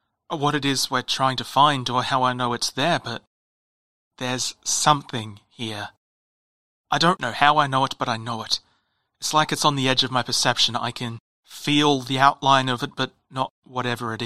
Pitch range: 115-140 Hz